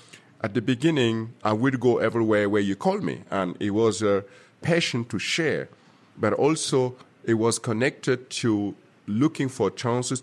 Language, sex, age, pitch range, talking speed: English, male, 50-69, 105-130 Hz, 160 wpm